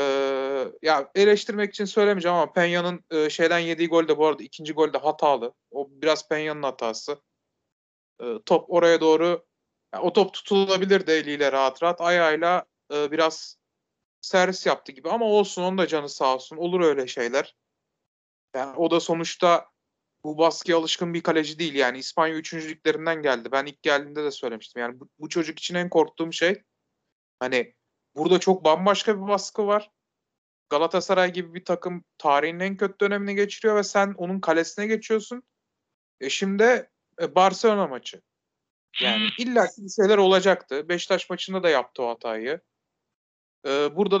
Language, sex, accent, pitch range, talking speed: Turkish, male, native, 150-190 Hz, 150 wpm